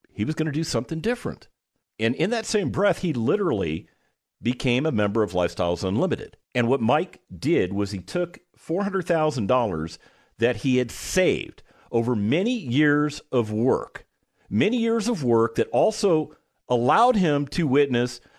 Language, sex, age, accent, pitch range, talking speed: English, male, 50-69, American, 115-185 Hz, 155 wpm